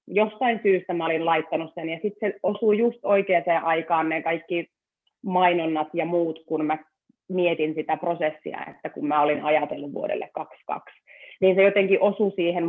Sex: female